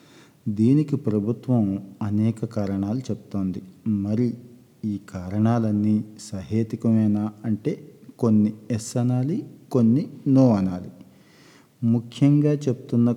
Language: Telugu